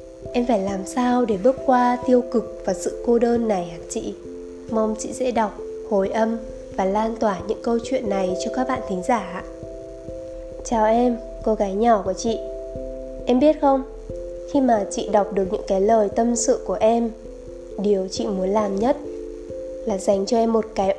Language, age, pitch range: Vietnamese, 20-39, 185-245 Hz